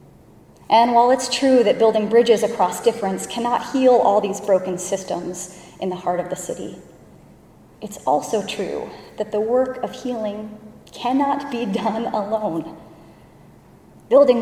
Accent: American